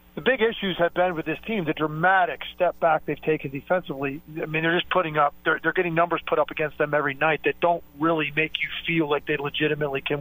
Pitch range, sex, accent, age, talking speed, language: 155-185 Hz, male, American, 40-59, 240 wpm, English